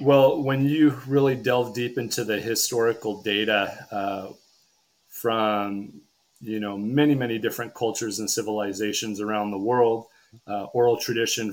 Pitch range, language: 105-125 Hz, English